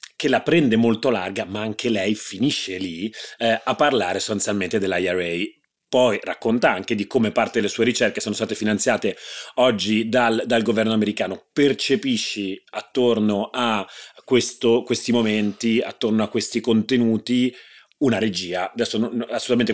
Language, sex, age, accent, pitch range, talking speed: Italian, male, 30-49, native, 105-125 Hz, 145 wpm